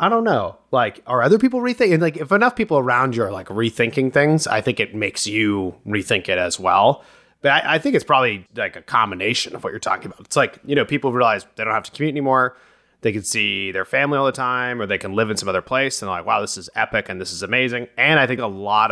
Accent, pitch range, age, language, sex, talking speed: American, 100-140 Hz, 30-49, English, male, 270 wpm